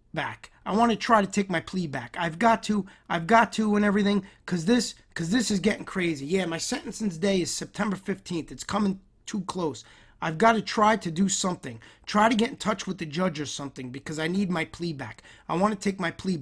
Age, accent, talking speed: 30-49, American, 240 wpm